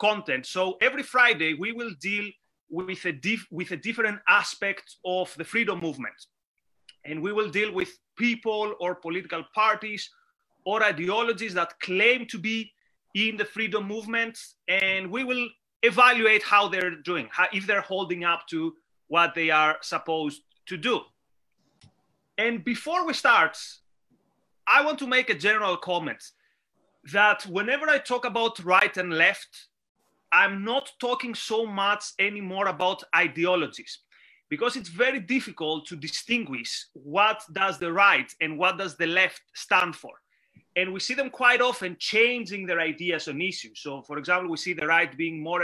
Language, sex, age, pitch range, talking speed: English, male, 30-49, 170-230 Hz, 155 wpm